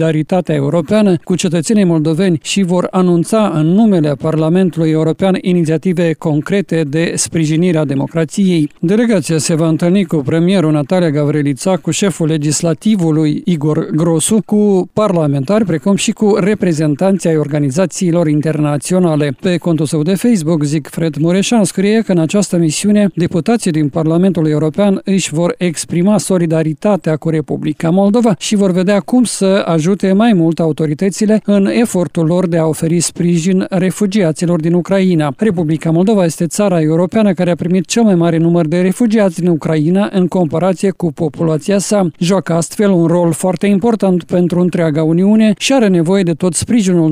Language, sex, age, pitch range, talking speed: Romanian, male, 50-69, 165-195 Hz, 150 wpm